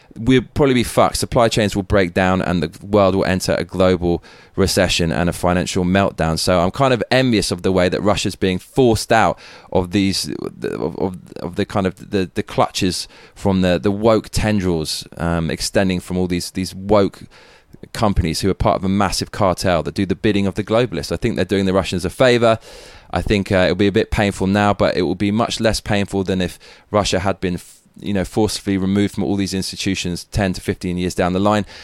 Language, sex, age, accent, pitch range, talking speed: English, male, 20-39, British, 90-105 Hz, 220 wpm